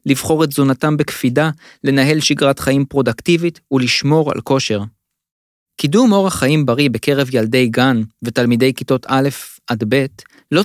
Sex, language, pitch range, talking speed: male, Hebrew, 120-175 Hz, 135 wpm